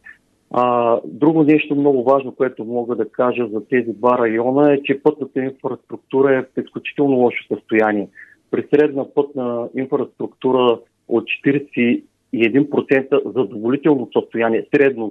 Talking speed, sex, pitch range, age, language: 120 wpm, male, 115-140 Hz, 40-59, Bulgarian